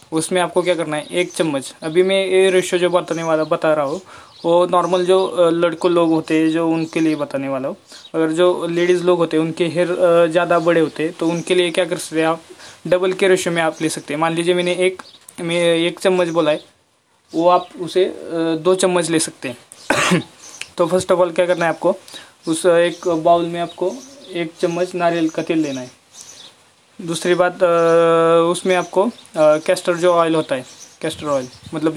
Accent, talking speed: native, 195 wpm